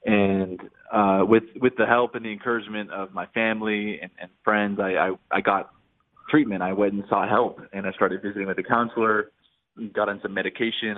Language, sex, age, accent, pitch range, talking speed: English, male, 20-39, American, 100-115 Hz, 195 wpm